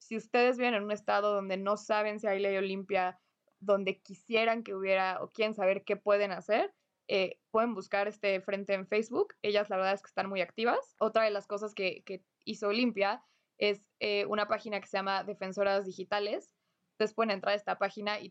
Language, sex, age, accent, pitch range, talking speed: Spanish, female, 20-39, Mexican, 195-225 Hz, 205 wpm